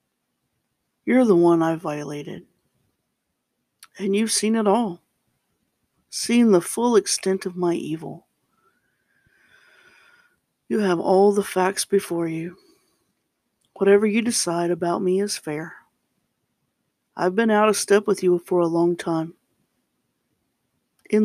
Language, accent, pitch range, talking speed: English, American, 170-215 Hz, 120 wpm